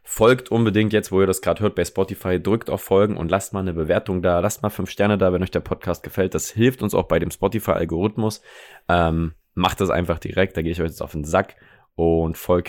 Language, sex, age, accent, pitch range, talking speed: German, male, 20-39, German, 80-100 Hz, 235 wpm